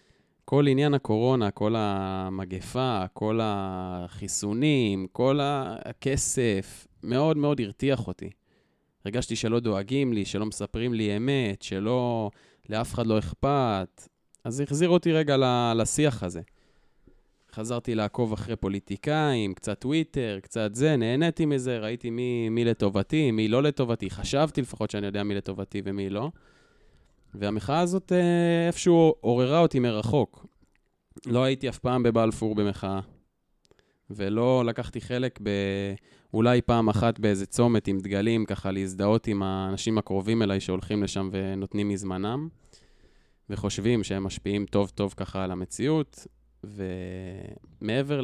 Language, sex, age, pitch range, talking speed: Hebrew, male, 20-39, 100-125 Hz, 120 wpm